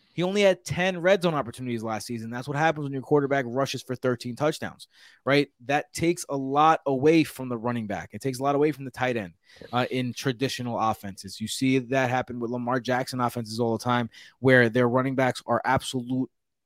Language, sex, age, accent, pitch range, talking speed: English, male, 20-39, American, 125-150 Hz, 215 wpm